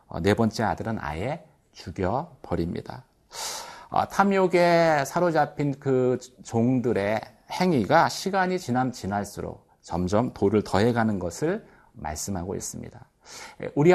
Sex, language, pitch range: male, Korean, 100-160 Hz